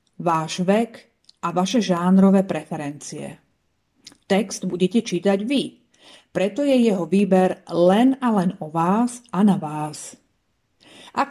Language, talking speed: Slovak, 120 wpm